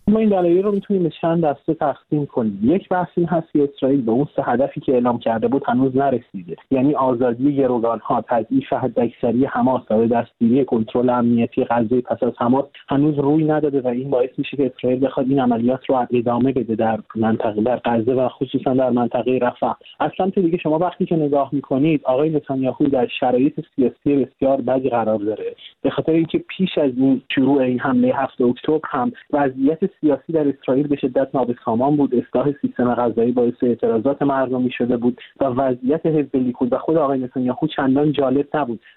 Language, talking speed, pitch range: Persian, 180 wpm, 125-160 Hz